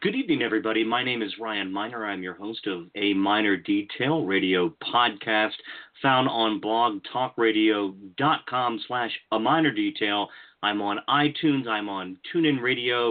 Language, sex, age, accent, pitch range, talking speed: English, male, 40-59, American, 95-135 Hz, 135 wpm